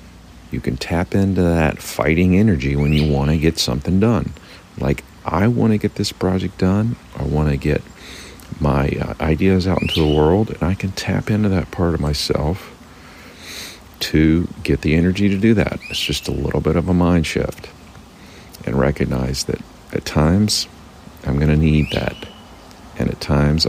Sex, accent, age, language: male, American, 50-69, English